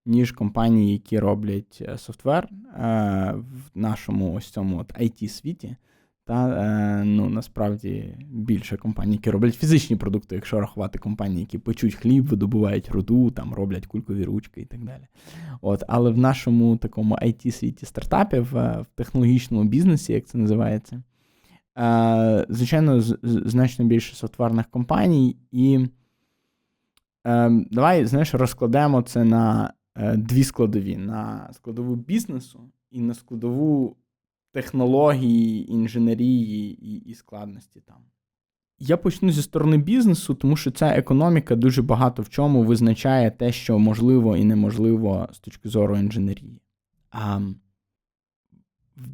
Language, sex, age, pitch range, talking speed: Ukrainian, male, 20-39, 110-130 Hz, 125 wpm